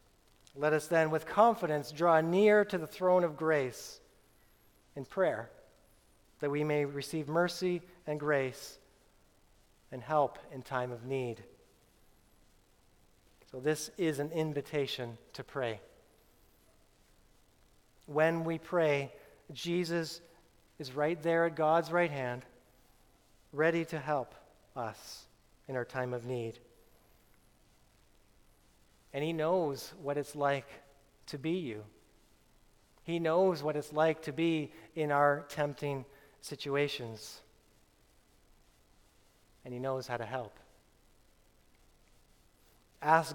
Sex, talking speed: male, 110 wpm